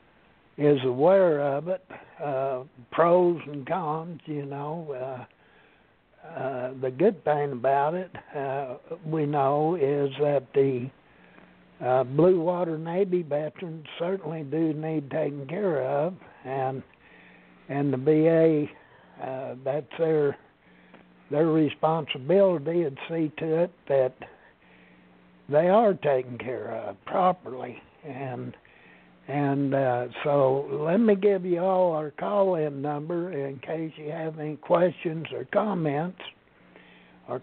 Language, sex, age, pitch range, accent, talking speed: English, male, 60-79, 135-175 Hz, American, 120 wpm